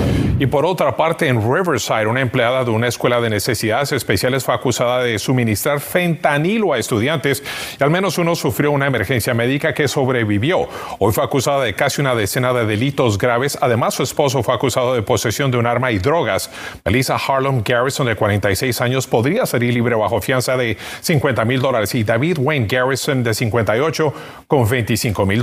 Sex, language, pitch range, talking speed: male, Spanish, 115-140 Hz, 180 wpm